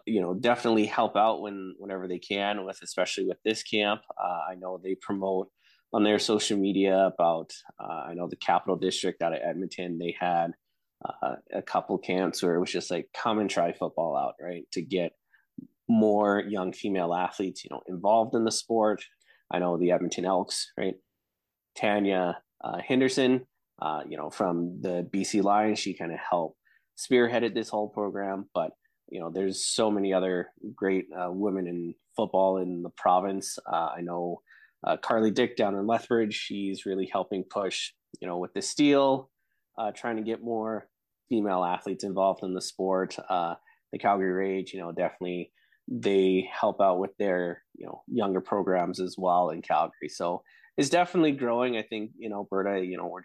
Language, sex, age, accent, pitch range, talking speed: English, male, 20-39, American, 90-110 Hz, 185 wpm